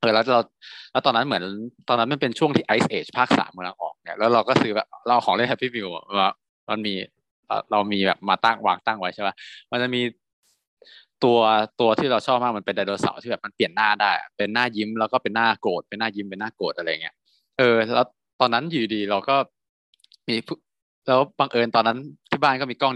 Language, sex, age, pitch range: Thai, male, 20-39, 100-130 Hz